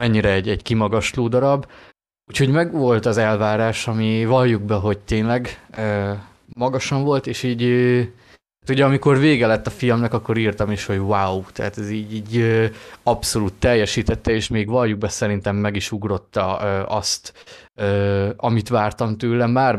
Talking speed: 165 wpm